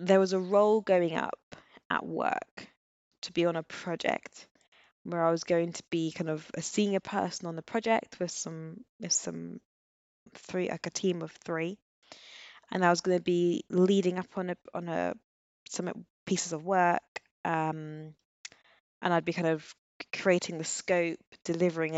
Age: 20-39